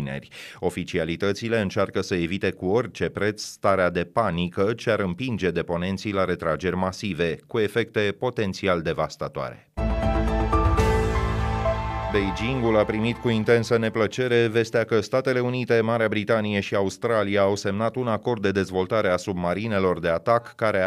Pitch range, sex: 90-115 Hz, male